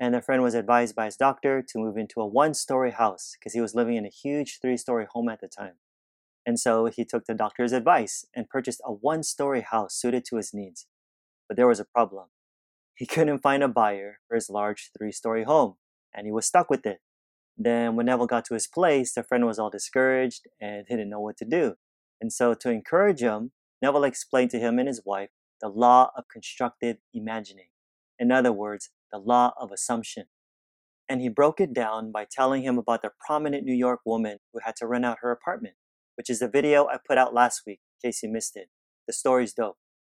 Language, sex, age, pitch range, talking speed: English, male, 30-49, 110-130 Hz, 215 wpm